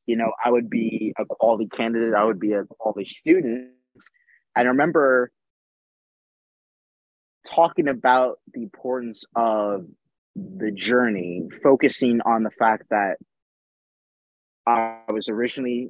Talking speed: 120 wpm